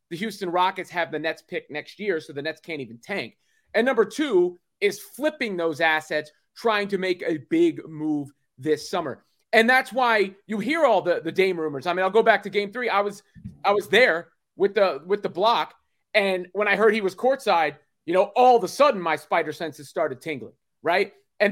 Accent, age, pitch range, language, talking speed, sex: American, 30-49, 170-220 Hz, English, 220 wpm, male